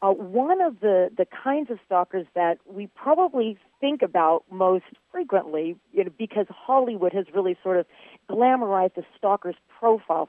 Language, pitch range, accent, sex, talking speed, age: English, 170-220 Hz, American, female, 155 wpm, 40-59